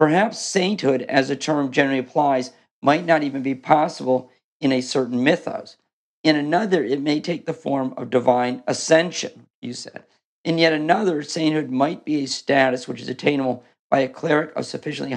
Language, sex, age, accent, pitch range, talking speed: English, male, 50-69, American, 130-160 Hz, 175 wpm